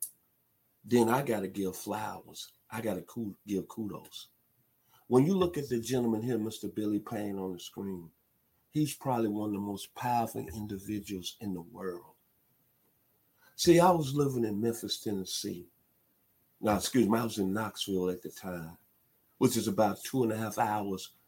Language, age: English, 50-69